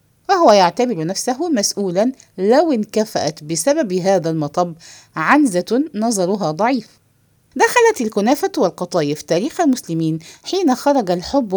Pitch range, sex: 165-275 Hz, female